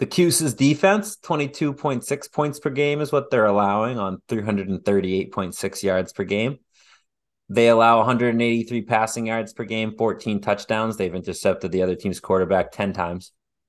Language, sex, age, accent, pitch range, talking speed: English, male, 30-49, American, 95-120 Hz, 145 wpm